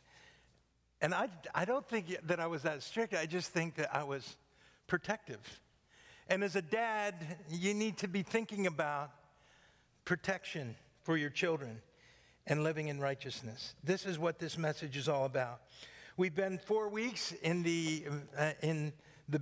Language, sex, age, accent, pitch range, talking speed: English, male, 60-79, American, 130-175 Hz, 160 wpm